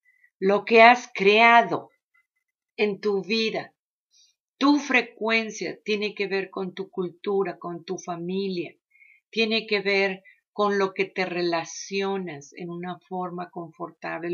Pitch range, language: 175-225 Hz, English